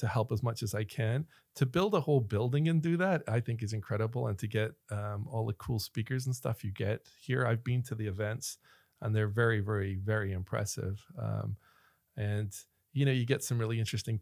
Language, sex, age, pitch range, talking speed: English, male, 40-59, 105-125 Hz, 215 wpm